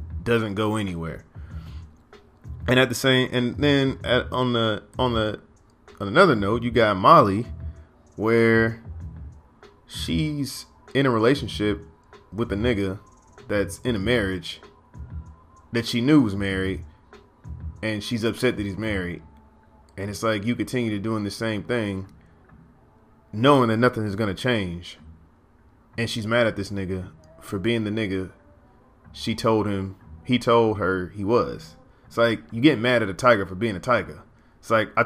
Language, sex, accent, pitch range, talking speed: English, male, American, 90-120 Hz, 160 wpm